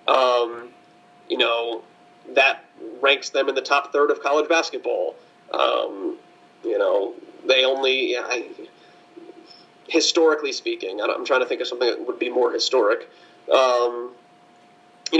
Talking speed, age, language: 130 wpm, 30-49, English